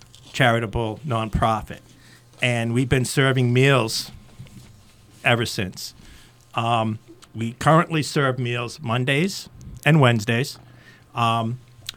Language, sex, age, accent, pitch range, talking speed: English, male, 50-69, American, 115-130 Hz, 90 wpm